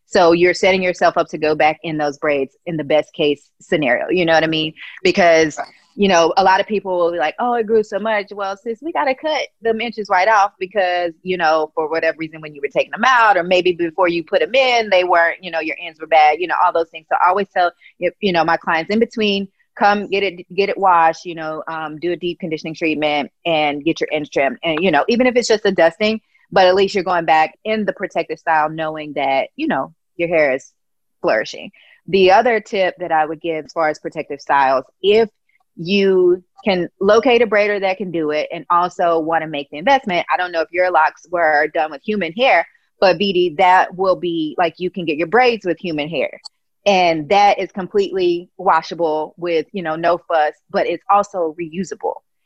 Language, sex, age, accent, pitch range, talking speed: English, female, 30-49, American, 160-200 Hz, 230 wpm